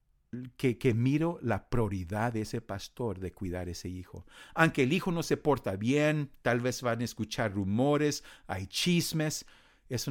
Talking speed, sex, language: 165 wpm, male, English